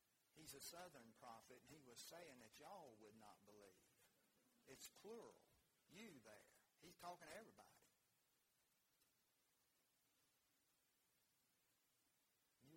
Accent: American